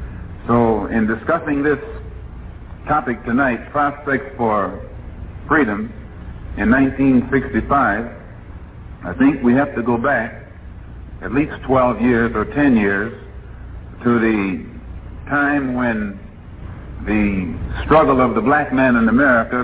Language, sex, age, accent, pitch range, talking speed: English, male, 60-79, American, 105-130 Hz, 115 wpm